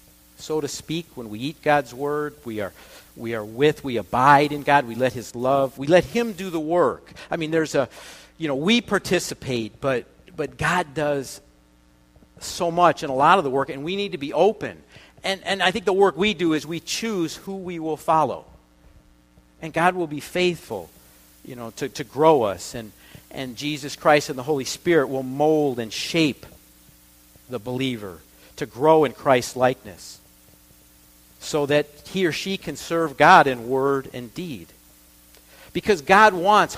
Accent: American